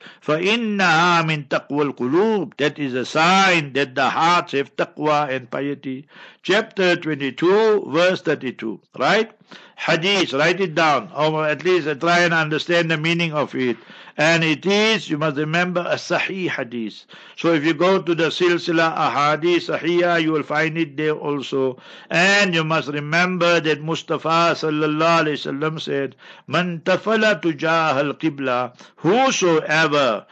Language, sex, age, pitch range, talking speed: English, male, 60-79, 145-175 Hz, 140 wpm